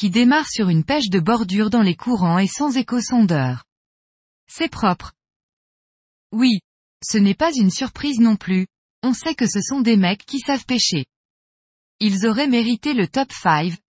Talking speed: 170 wpm